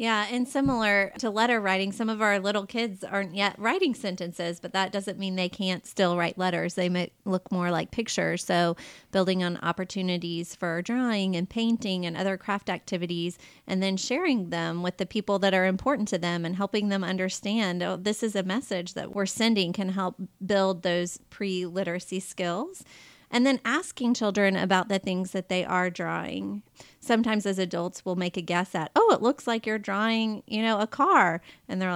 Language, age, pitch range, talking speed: English, 30-49, 180-215 Hz, 195 wpm